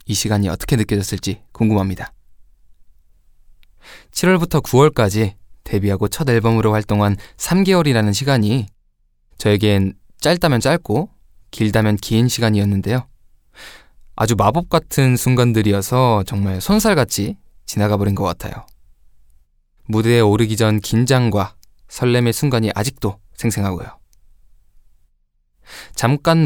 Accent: native